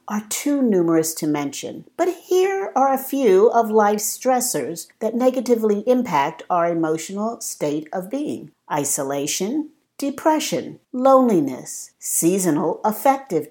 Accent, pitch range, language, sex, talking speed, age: American, 160-250 Hz, English, female, 115 wpm, 50-69